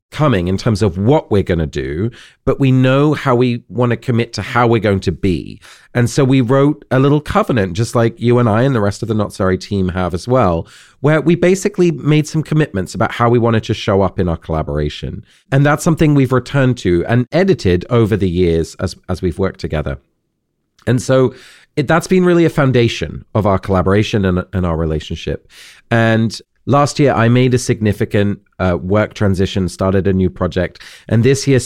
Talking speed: 210 wpm